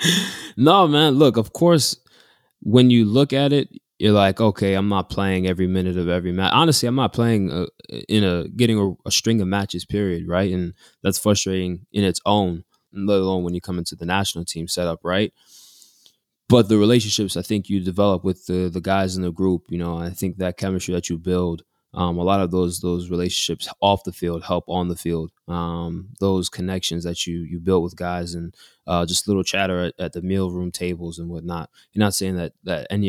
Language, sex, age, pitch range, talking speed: English, male, 20-39, 85-100 Hz, 215 wpm